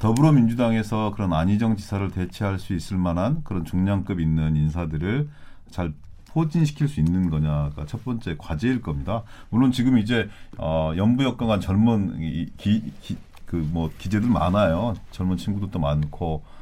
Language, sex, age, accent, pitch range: Korean, male, 40-59, native, 85-120 Hz